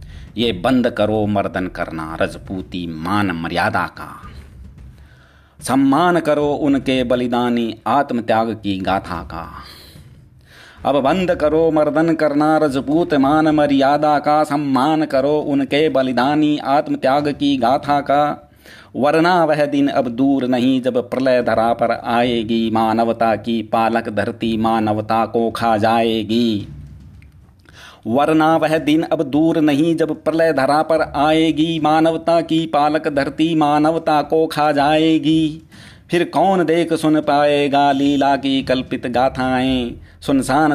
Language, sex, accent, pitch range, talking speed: Hindi, male, native, 115-155 Hz, 120 wpm